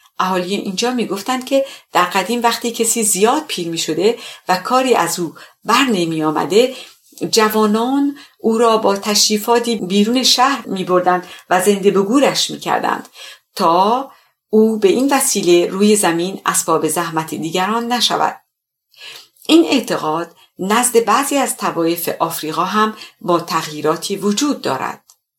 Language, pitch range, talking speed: English, 170-235 Hz, 130 wpm